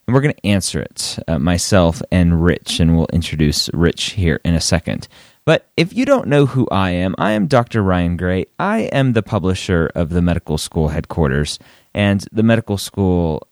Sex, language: male, English